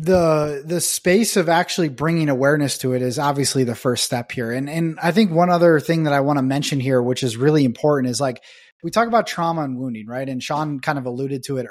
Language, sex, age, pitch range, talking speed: English, male, 20-39, 130-165 Hz, 245 wpm